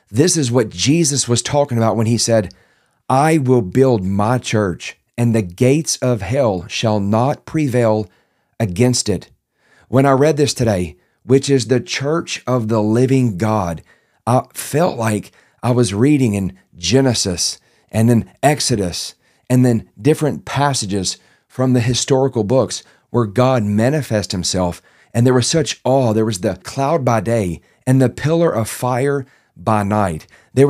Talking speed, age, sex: 155 wpm, 40-59, male